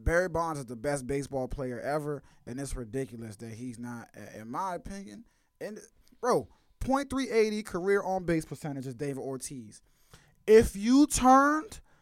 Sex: male